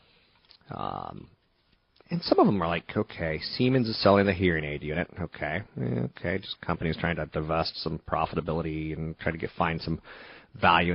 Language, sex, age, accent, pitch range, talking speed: English, male, 30-49, American, 80-105 Hz, 165 wpm